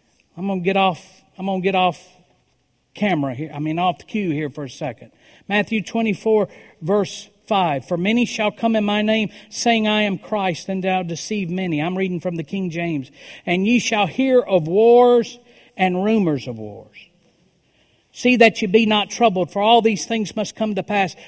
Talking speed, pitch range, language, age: 195 wpm, 160-210 Hz, English, 50-69